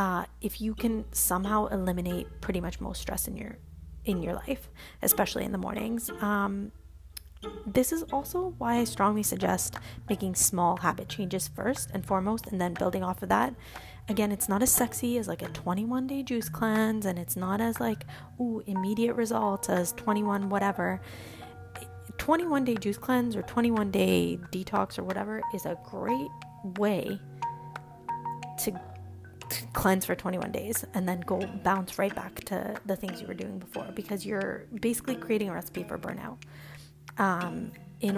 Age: 20-39